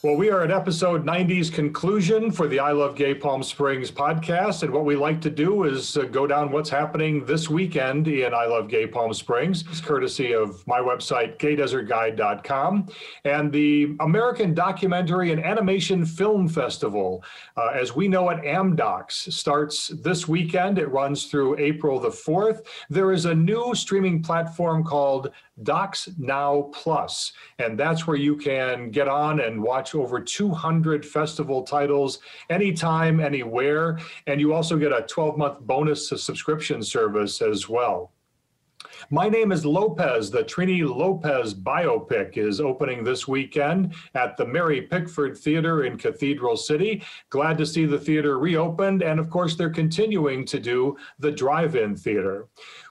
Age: 40-59